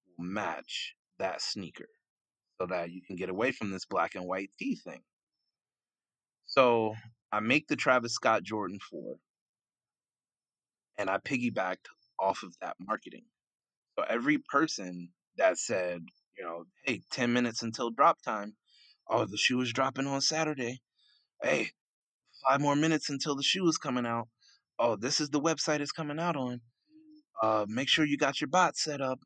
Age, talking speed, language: 30-49, 160 wpm, English